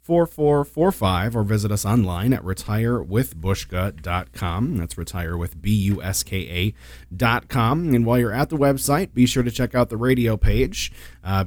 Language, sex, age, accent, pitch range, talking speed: English, male, 30-49, American, 90-115 Hz, 150 wpm